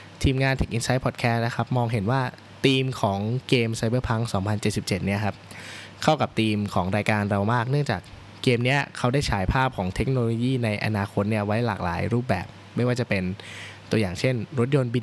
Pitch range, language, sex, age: 100-125 Hz, Thai, male, 20-39